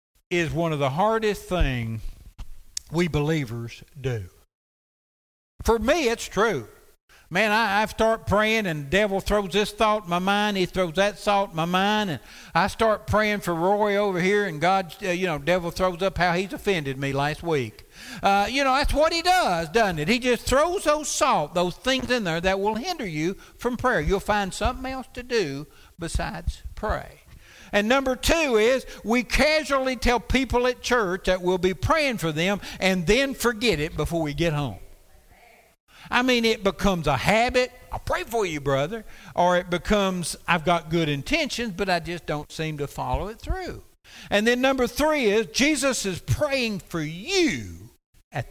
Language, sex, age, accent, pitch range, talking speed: English, male, 60-79, American, 160-235 Hz, 185 wpm